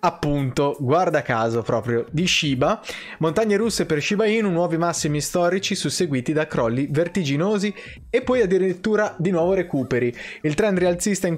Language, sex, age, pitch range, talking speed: Italian, male, 20-39, 125-170 Hz, 150 wpm